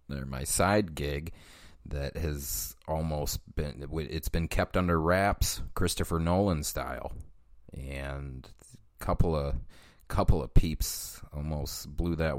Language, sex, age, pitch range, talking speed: English, male, 30-49, 75-100 Hz, 110 wpm